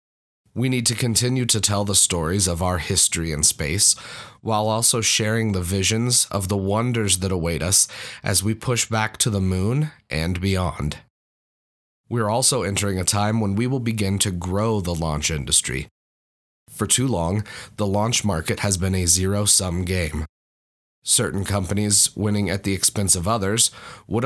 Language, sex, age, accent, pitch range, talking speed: English, male, 30-49, American, 90-110 Hz, 170 wpm